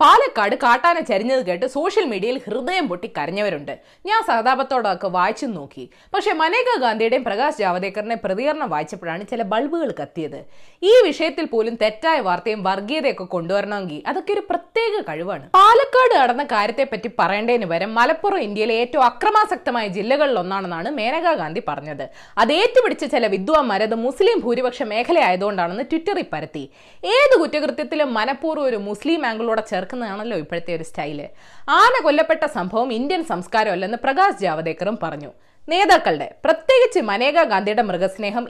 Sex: female